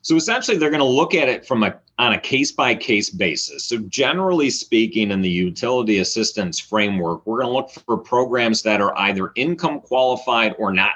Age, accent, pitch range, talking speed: 30-49, American, 105-140 Hz, 190 wpm